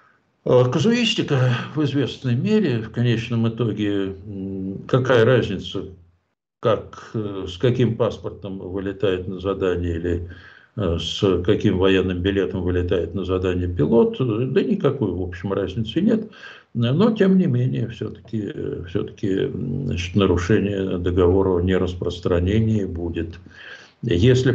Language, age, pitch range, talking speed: Ukrainian, 60-79, 95-130 Hz, 110 wpm